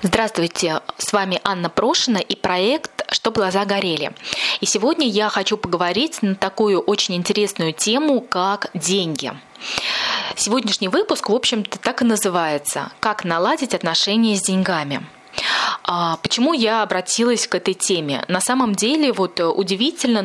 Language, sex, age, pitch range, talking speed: Russian, female, 20-39, 180-225 Hz, 135 wpm